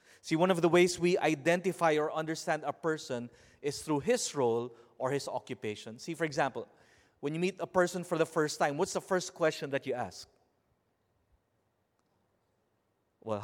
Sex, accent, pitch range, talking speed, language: male, Filipino, 145-185 Hz, 170 wpm, English